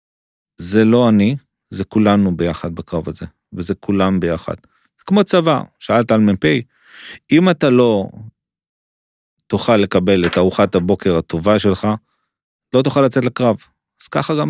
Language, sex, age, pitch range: English, male, 30-49, 90-120 Hz